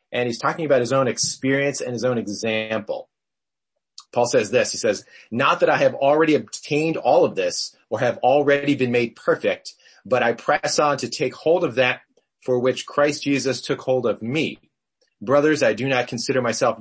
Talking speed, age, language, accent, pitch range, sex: 195 wpm, 30-49, English, American, 110-145 Hz, male